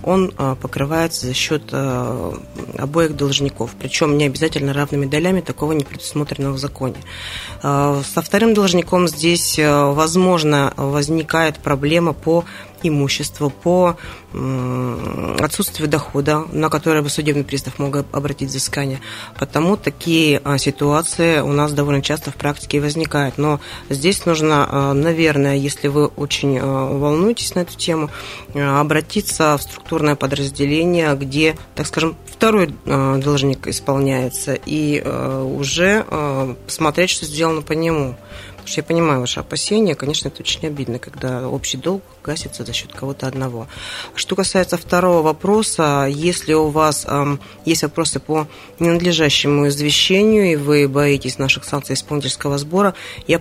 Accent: native